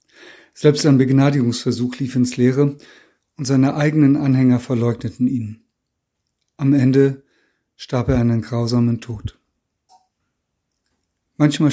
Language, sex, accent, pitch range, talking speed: German, male, German, 125-140 Hz, 100 wpm